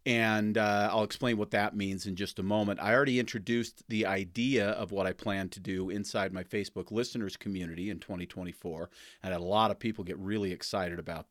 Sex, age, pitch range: male, 40-59, 105-130 Hz